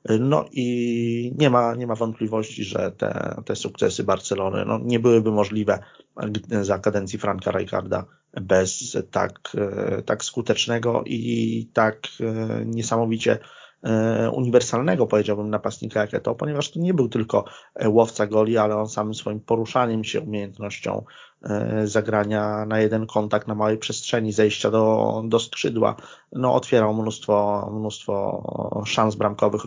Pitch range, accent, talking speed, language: 105-115 Hz, native, 125 wpm, Polish